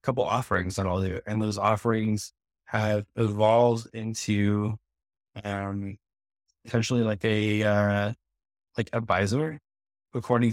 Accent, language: American, English